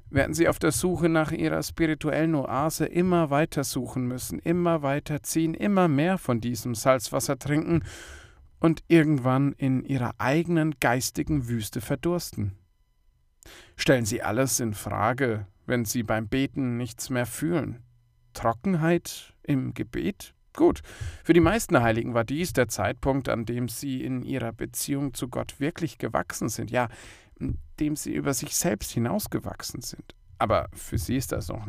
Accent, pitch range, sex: German, 110-155 Hz, male